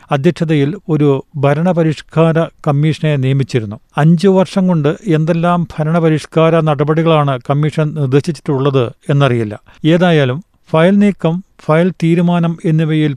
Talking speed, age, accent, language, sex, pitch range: 85 wpm, 40-59, native, Malayalam, male, 145-170 Hz